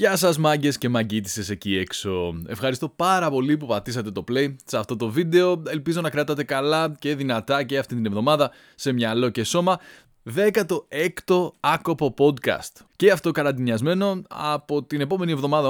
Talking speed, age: 165 wpm, 20-39